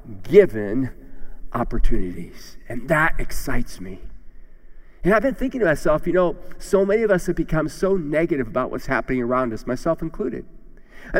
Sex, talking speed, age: male, 160 wpm, 50-69